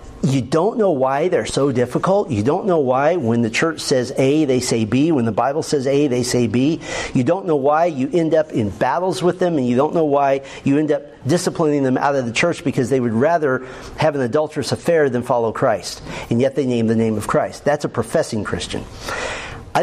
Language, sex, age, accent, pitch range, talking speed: English, male, 50-69, American, 125-165 Hz, 230 wpm